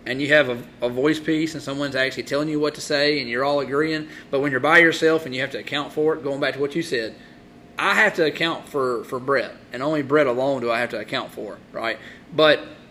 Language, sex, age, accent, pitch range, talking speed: English, male, 30-49, American, 135-165 Hz, 260 wpm